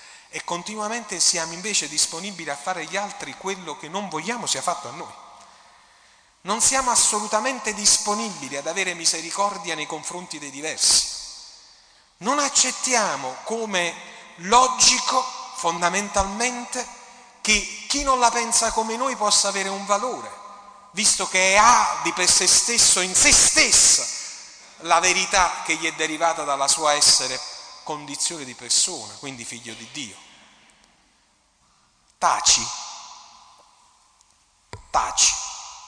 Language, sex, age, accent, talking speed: Italian, male, 40-59, native, 120 wpm